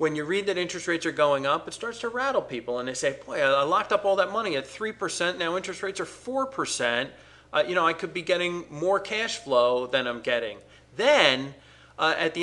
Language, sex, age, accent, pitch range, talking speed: English, male, 40-59, American, 135-185 Hz, 230 wpm